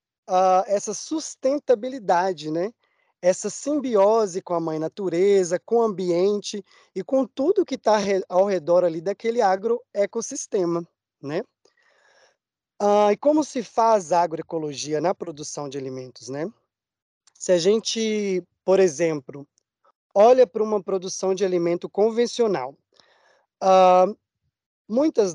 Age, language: 20-39, Portuguese